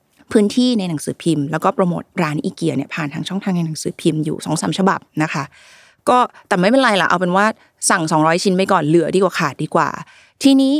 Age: 20-39